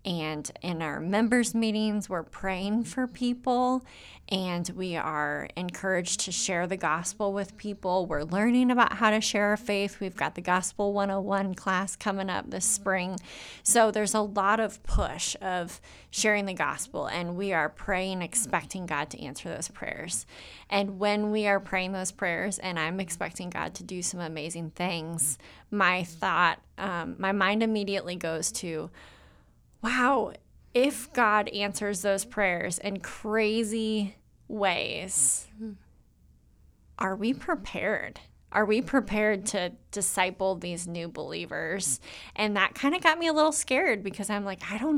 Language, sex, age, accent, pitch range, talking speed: English, female, 20-39, American, 180-215 Hz, 155 wpm